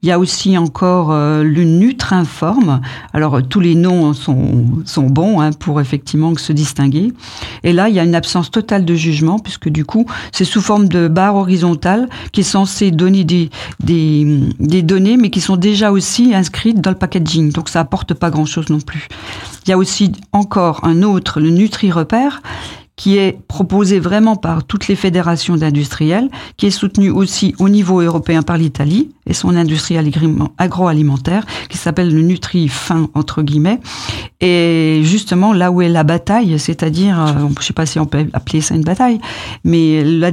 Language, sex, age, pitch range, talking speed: French, female, 50-69, 155-195 Hz, 180 wpm